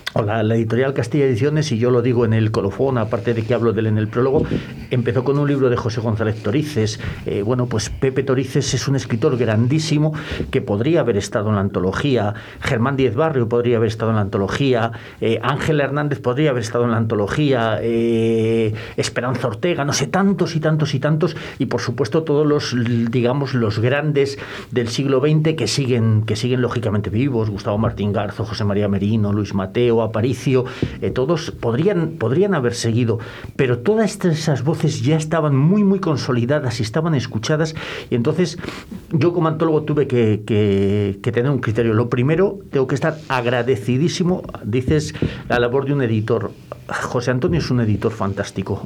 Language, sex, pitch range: Spanish, male, 115-150 Hz